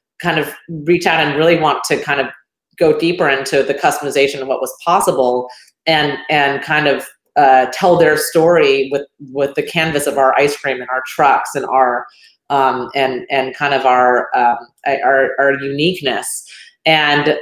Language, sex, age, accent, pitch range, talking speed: English, female, 30-49, American, 140-170 Hz, 175 wpm